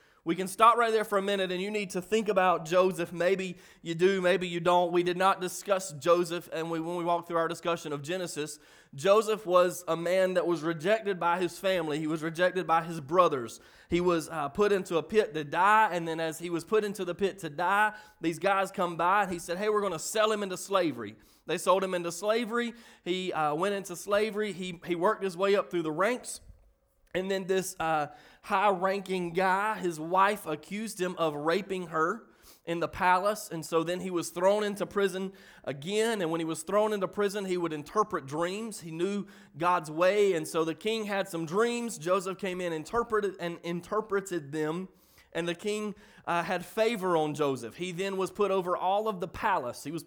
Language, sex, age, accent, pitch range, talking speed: English, male, 30-49, American, 170-200 Hz, 215 wpm